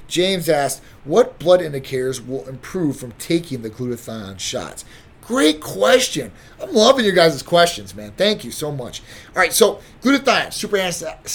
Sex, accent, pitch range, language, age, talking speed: male, American, 125-170 Hz, English, 30-49, 160 wpm